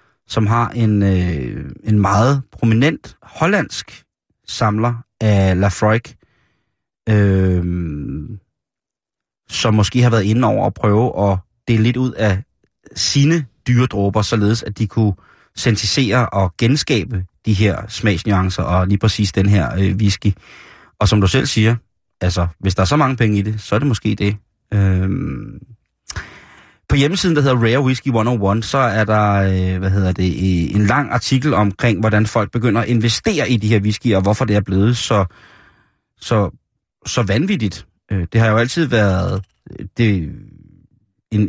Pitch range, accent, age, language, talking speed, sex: 100-120 Hz, native, 30-49, Danish, 155 wpm, male